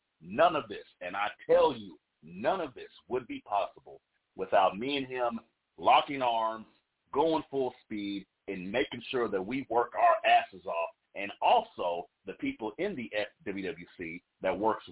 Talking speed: 160 wpm